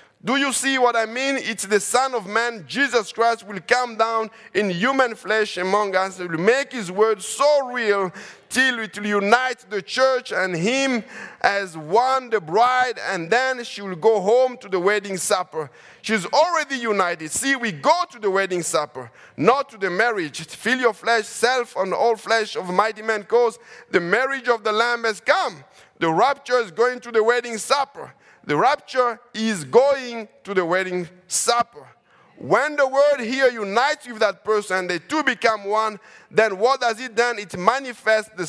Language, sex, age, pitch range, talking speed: English, male, 50-69, 200-250 Hz, 185 wpm